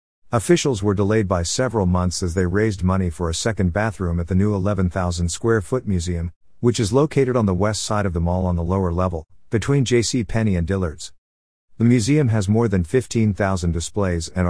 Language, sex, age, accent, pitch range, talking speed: English, male, 50-69, American, 90-115 Hz, 200 wpm